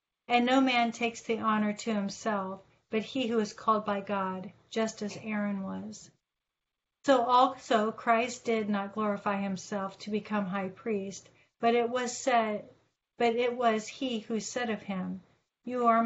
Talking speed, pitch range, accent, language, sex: 165 wpm, 205-230 Hz, American, English, female